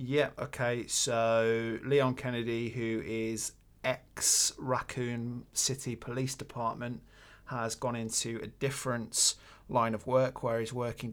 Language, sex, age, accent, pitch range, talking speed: English, male, 20-39, British, 110-125 Hz, 120 wpm